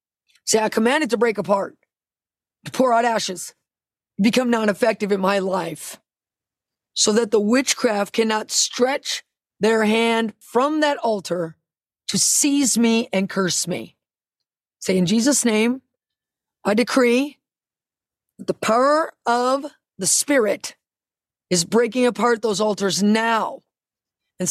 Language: English